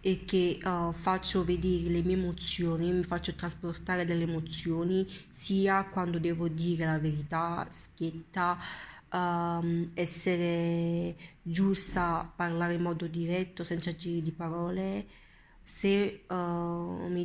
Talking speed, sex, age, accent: 120 wpm, female, 20-39, native